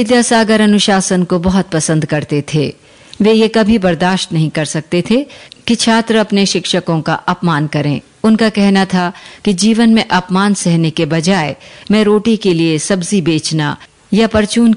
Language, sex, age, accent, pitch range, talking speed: Hindi, female, 50-69, native, 165-210 Hz, 165 wpm